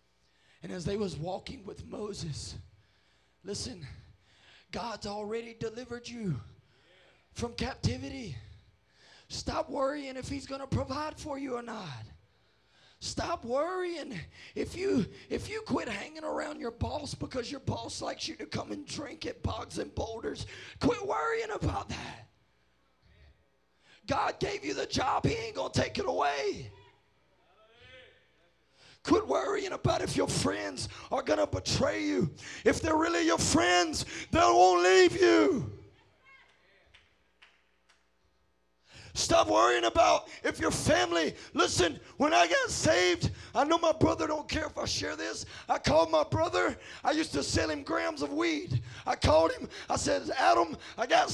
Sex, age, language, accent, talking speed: male, 20-39, English, American, 145 wpm